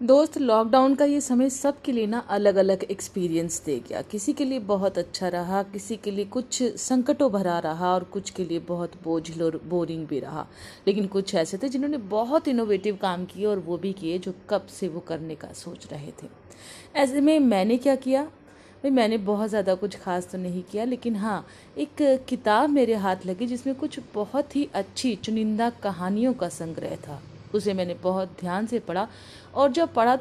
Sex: female